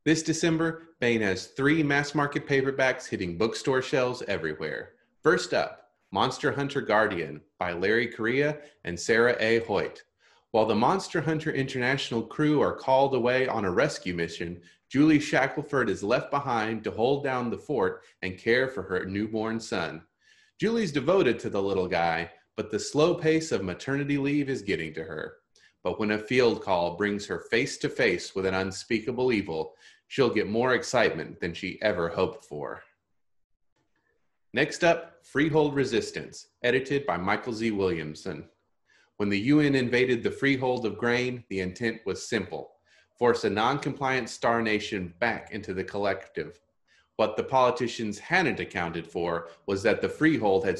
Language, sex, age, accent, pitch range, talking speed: English, male, 30-49, American, 100-140 Hz, 155 wpm